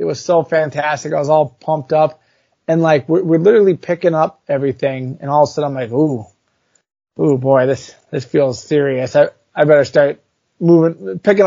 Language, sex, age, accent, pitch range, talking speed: English, male, 30-49, American, 140-180 Hz, 195 wpm